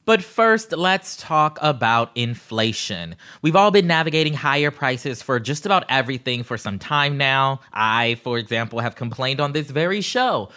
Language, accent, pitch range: English, American, 125-165 Hz